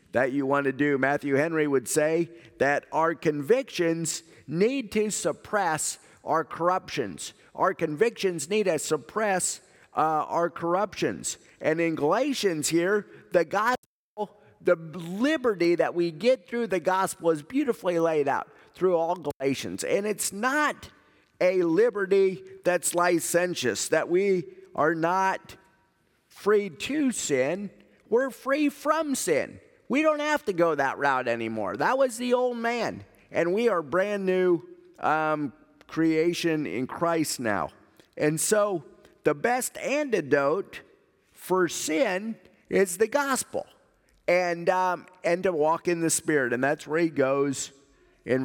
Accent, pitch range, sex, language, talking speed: American, 155-210 Hz, male, English, 135 wpm